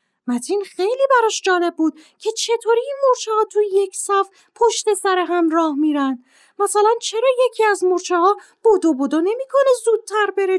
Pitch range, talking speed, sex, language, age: 285-435 Hz, 155 wpm, female, Persian, 30-49